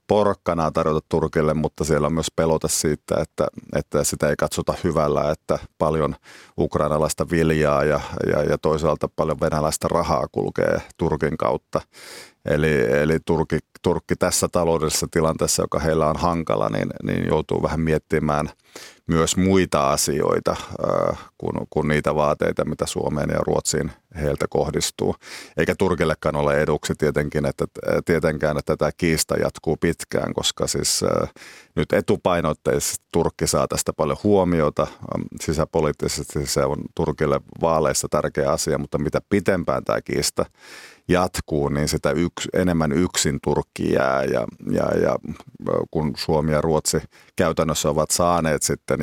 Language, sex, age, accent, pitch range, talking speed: Finnish, male, 30-49, native, 75-85 Hz, 135 wpm